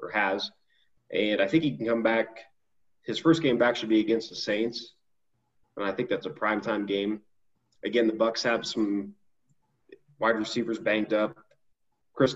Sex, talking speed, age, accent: male, 175 wpm, 20-39, American